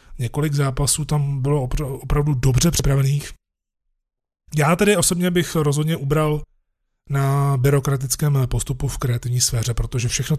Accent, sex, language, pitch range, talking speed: native, male, Czech, 120-145 Hz, 120 wpm